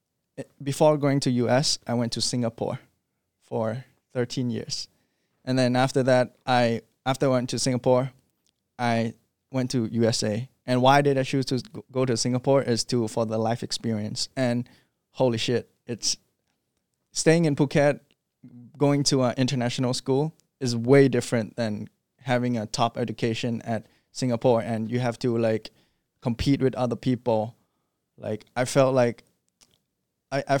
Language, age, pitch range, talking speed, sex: English, 20-39, 115-135 Hz, 150 wpm, male